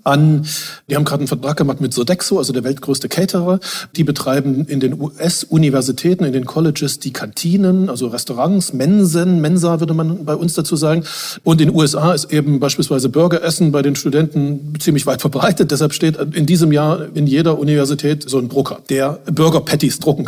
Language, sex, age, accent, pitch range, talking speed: German, male, 40-59, German, 145-180 Hz, 180 wpm